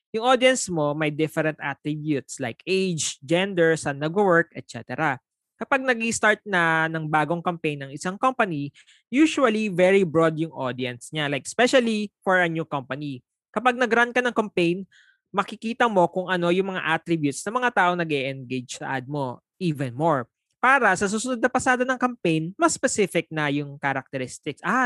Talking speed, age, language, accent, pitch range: 160 wpm, 20-39, English, Filipino, 145-210 Hz